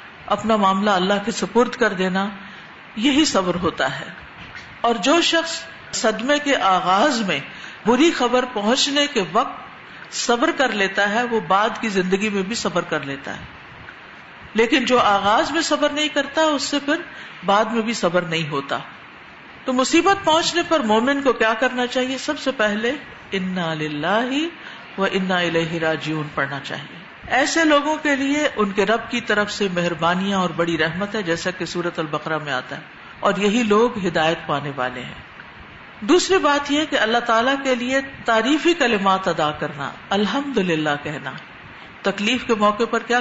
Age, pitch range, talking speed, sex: 50-69, 190-275 Hz, 170 wpm, female